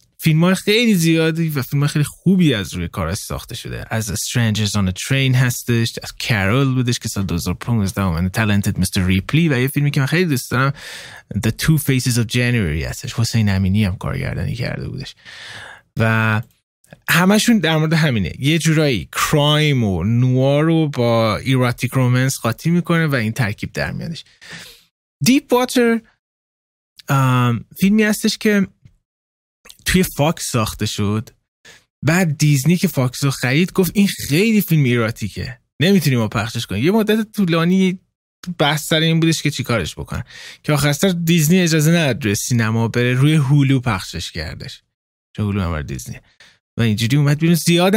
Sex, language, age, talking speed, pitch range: male, Persian, 20-39, 150 wpm, 115-165 Hz